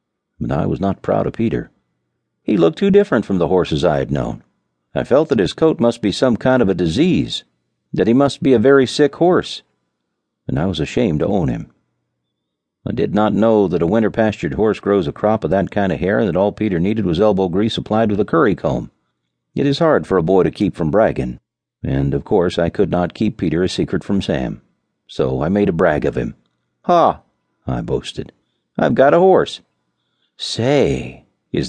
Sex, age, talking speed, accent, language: male, 50-69, 210 wpm, American, English